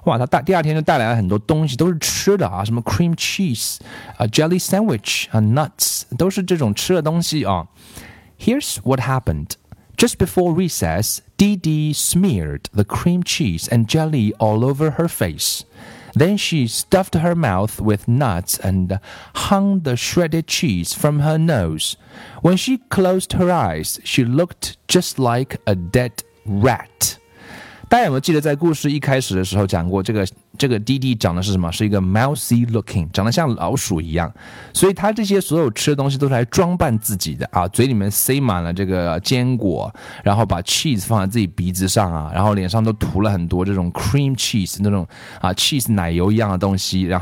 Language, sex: Chinese, male